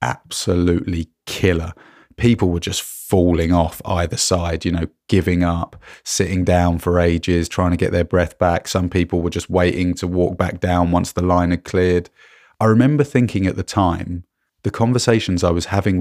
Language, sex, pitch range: English, male, 90-110 Hz